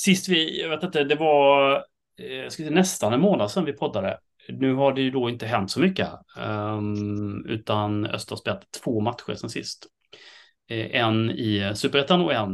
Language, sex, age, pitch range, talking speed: Swedish, male, 30-49, 100-135 Hz, 180 wpm